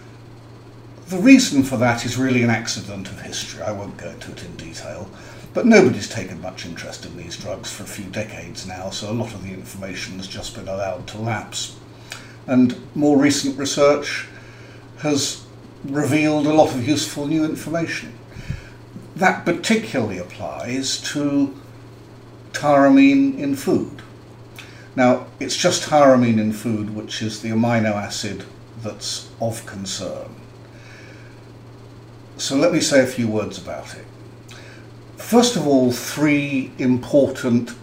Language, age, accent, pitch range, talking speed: English, 50-69, British, 110-130 Hz, 140 wpm